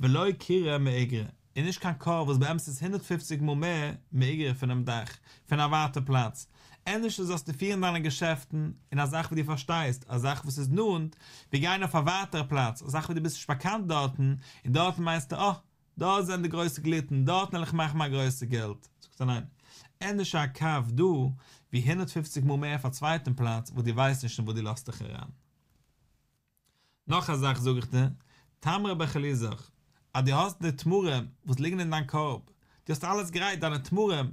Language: English